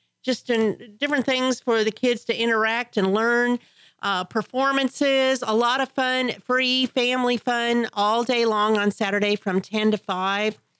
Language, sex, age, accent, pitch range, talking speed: English, female, 40-59, American, 205-250 Hz, 160 wpm